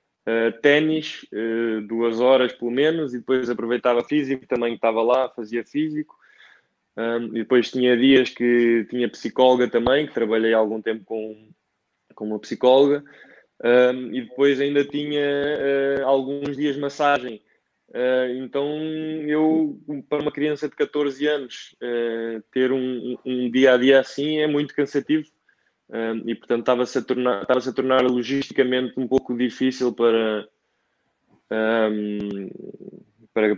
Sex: male